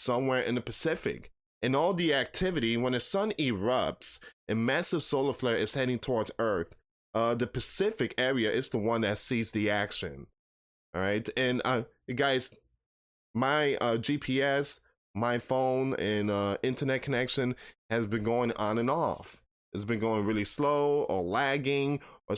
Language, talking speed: English, 160 wpm